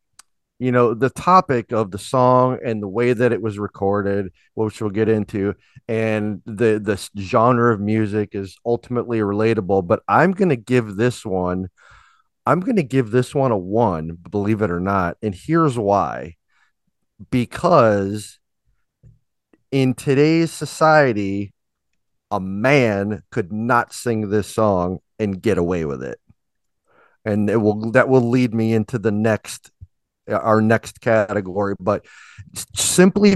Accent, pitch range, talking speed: American, 105-125 Hz, 145 wpm